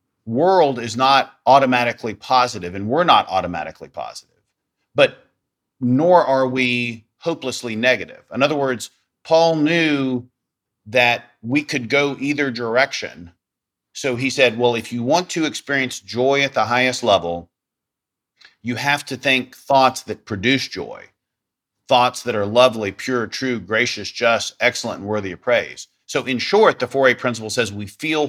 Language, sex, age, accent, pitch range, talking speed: English, male, 40-59, American, 110-135 Hz, 150 wpm